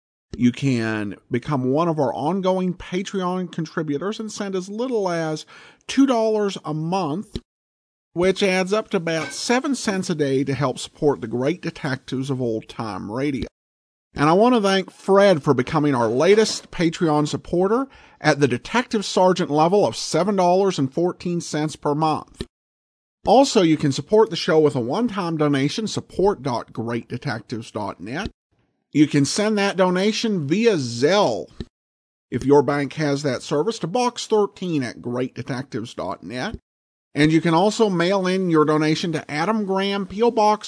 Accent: American